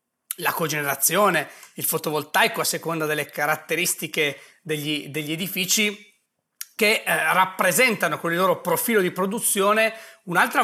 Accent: native